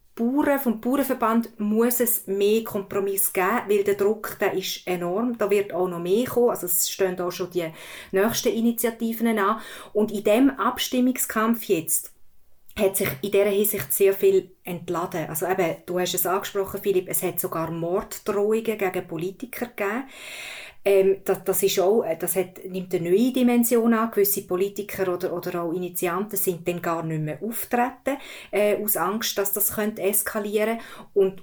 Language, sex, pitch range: German, female, 180-215 Hz